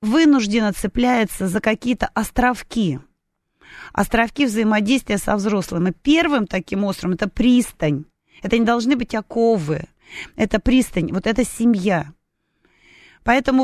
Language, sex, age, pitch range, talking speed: Russian, female, 30-49, 185-245 Hz, 120 wpm